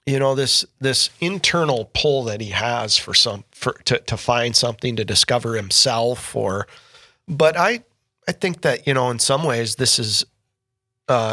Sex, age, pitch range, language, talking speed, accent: male, 40-59, 115-135 Hz, English, 175 wpm, American